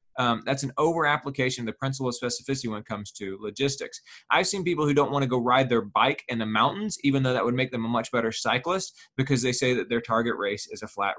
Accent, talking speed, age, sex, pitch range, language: American, 255 wpm, 20-39, male, 120-155 Hz, English